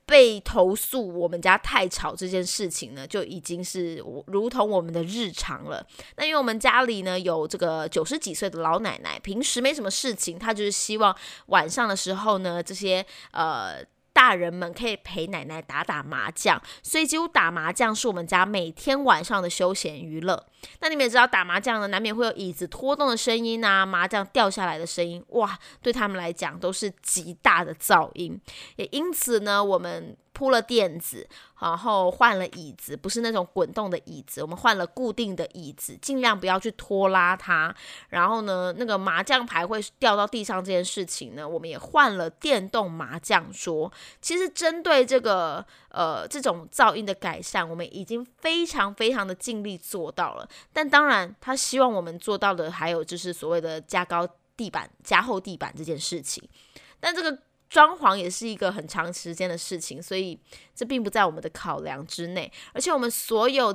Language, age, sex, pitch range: Chinese, 20-39, female, 175-235 Hz